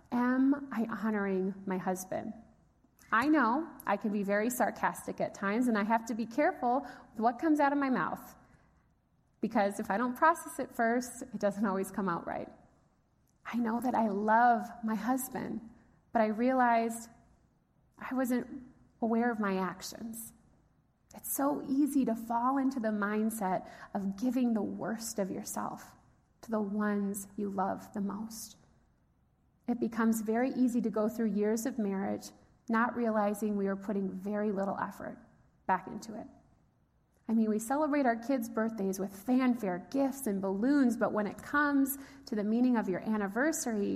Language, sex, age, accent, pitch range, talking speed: English, female, 30-49, American, 200-245 Hz, 165 wpm